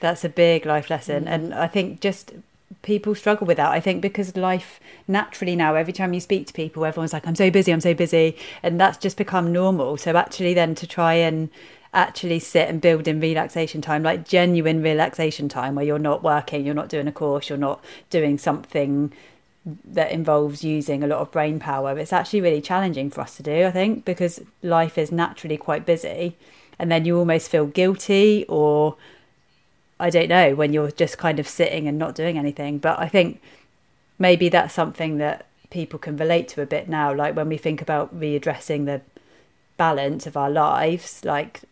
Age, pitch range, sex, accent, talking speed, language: 30-49, 150-175 Hz, female, British, 200 wpm, English